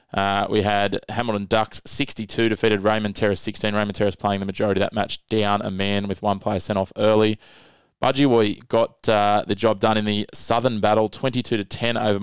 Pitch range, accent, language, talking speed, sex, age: 105-115 Hz, Australian, English, 200 wpm, male, 20-39